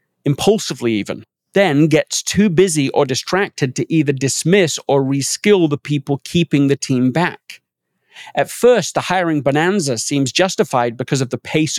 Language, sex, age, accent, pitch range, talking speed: English, male, 40-59, British, 130-155 Hz, 155 wpm